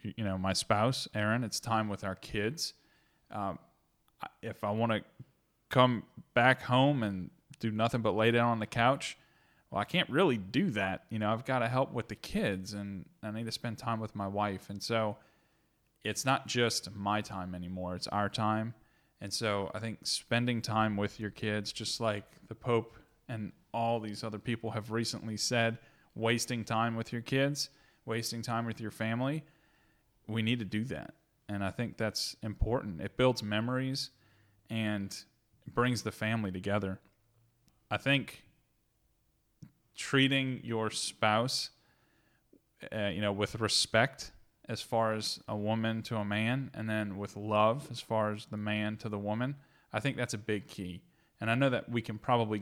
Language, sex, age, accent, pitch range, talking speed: English, male, 10-29, American, 105-120 Hz, 175 wpm